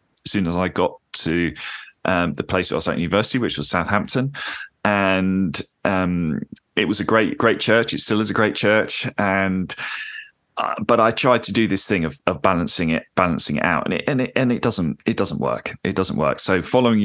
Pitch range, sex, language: 85-105 Hz, male, English